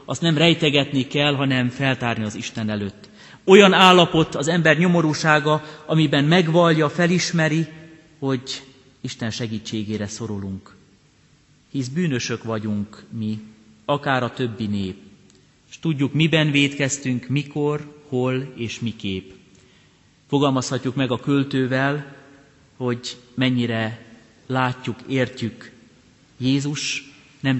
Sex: male